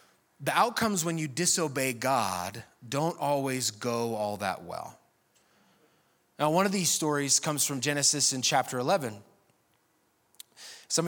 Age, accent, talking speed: 20-39, American, 130 wpm